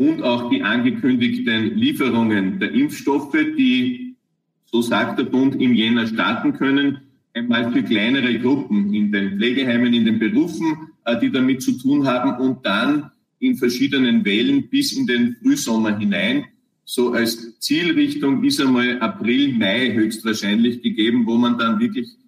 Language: German